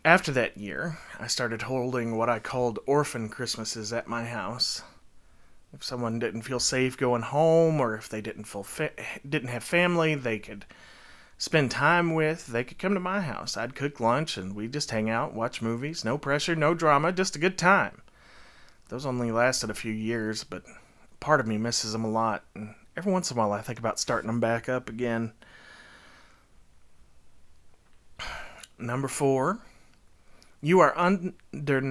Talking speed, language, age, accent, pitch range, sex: 175 wpm, English, 30-49, American, 110-145 Hz, male